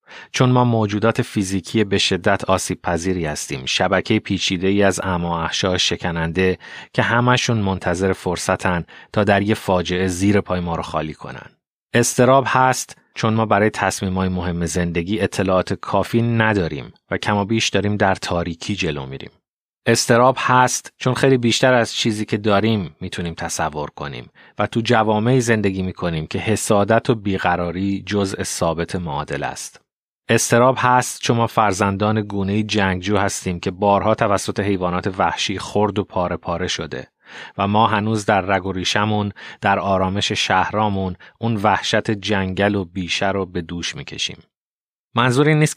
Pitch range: 90-115 Hz